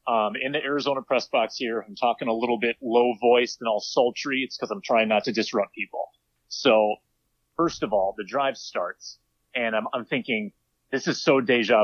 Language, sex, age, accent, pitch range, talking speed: English, male, 30-49, American, 110-145 Hz, 200 wpm